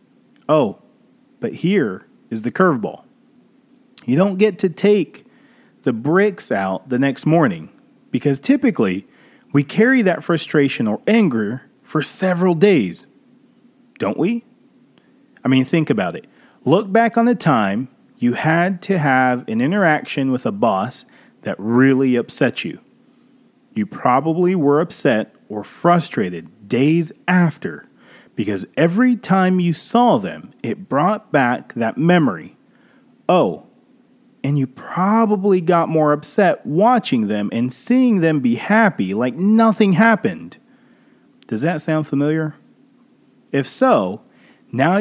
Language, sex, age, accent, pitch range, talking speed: English, male, 40-59, American, 155-245 Hz, 130 wpm